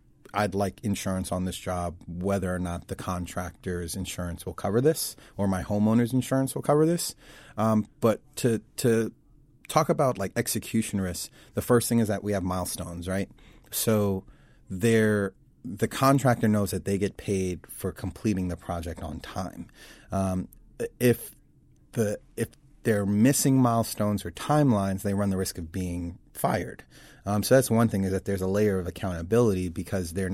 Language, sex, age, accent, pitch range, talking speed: English, male, 30-49, American, 95-115 Hz, 170 wpm